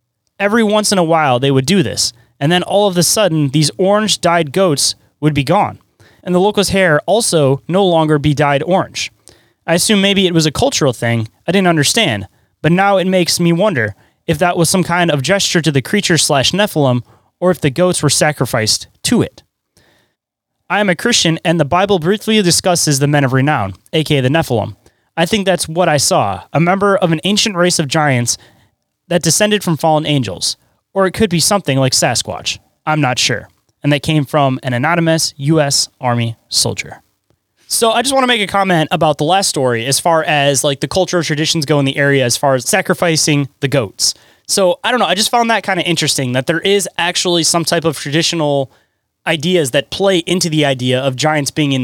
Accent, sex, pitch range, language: American, male, 135-180 Hz, English